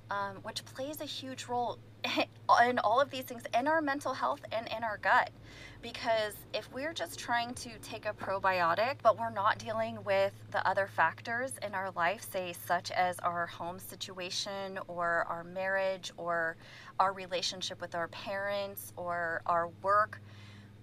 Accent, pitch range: American, 170-215 Hz